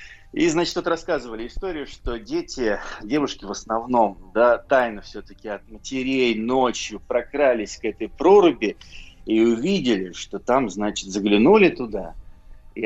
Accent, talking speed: native, 130 wpm